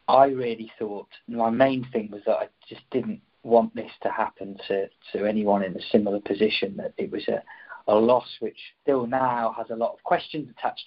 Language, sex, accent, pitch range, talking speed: English, male, British, 110-130 Hz, 205 wpm